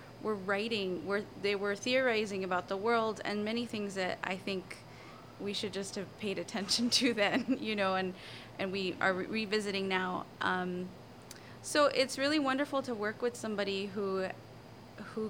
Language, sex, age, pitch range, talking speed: English, female, 20-39, 185-220 Hz, 165 wpm